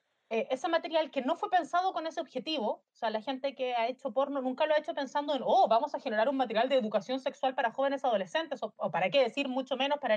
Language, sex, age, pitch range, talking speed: Spanish, female, 30-49, 230-305 Hz, 260 wpm